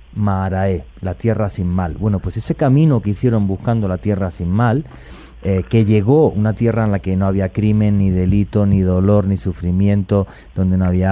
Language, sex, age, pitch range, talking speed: English, male, 30-49, 95-115 Hz, 195 wpm